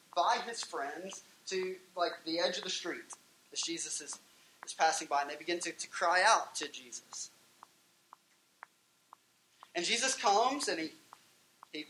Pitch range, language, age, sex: 160-205 Hz, English, 20-39, male